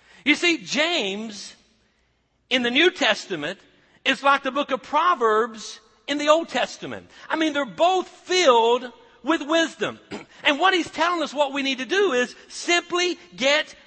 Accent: American